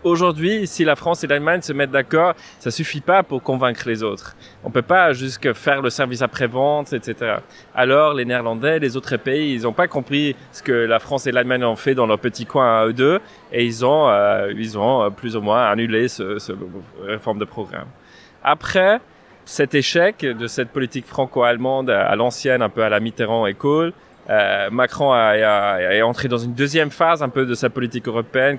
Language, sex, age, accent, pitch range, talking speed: French, male, 20-39, French, 115-140 Hz, 210 wpm